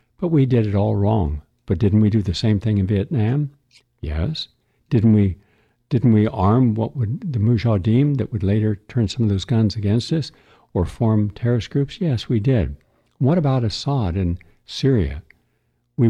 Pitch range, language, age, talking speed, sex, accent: 95-125 Hz, English, 60-79, 180 wpm, male, American